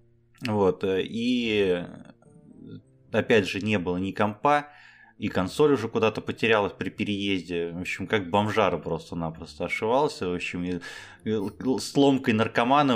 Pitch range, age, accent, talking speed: 90-115 Hz, 20-39, native, 125 wpm